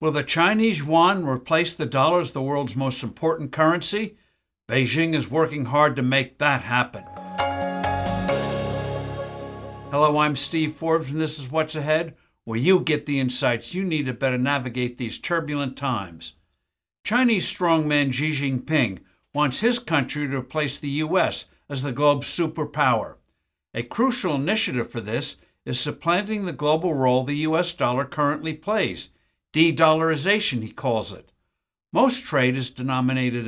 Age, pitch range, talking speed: 60-79, 125-160 Hz, 145 wpm